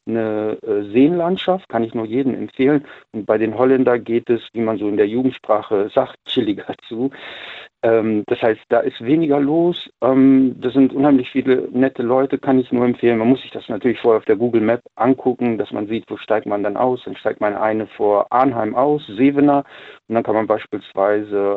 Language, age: German, 50-69